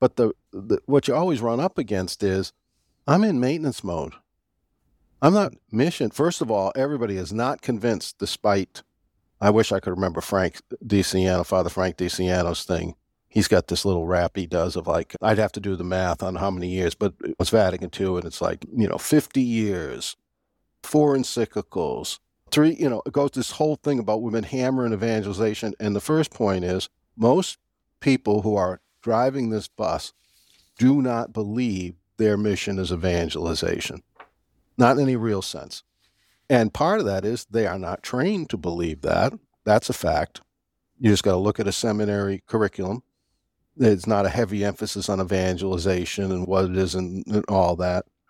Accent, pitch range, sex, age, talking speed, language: American, 95-125 Hz, male, 50-69, 180 wpm, English